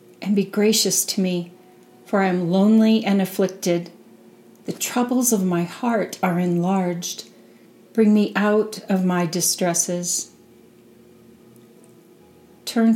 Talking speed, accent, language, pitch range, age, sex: 115 wpm, American, English, 175-210 Hz, 40-59, female